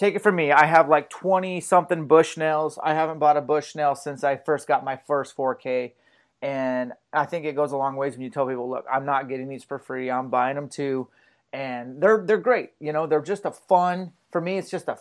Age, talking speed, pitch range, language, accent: 30-49, 250 wpm, 135-170 Hz, English, American